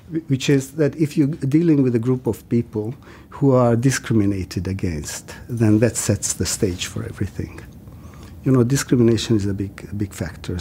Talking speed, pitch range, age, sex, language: 175 wpm, 100-125 Hz, 50-69, male, Dutch